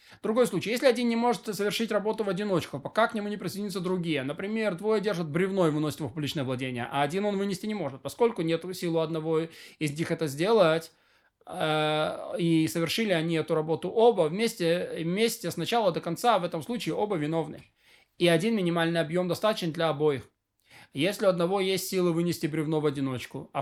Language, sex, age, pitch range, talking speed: Russian, male, 20-39, 160-210 Hz, 185 wpm